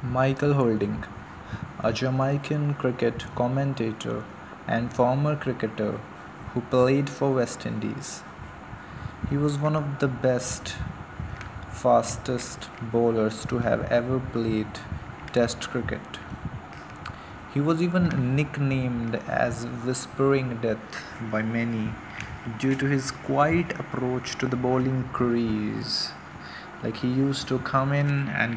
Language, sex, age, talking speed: English, male, 20-39, 110 wpm